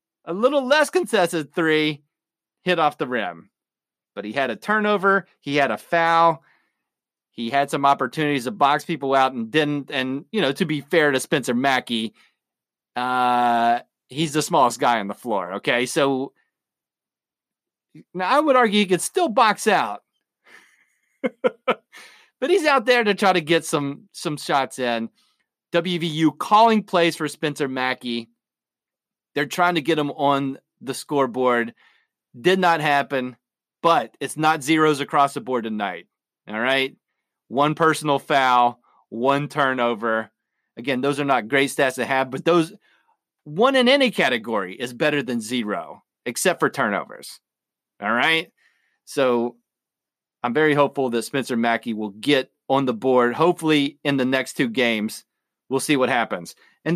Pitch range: 125-165 Hz